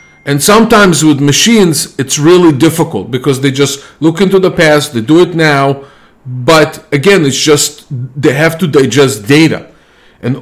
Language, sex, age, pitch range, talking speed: English, male, 40-59, 125-155 Hz, 160 wpm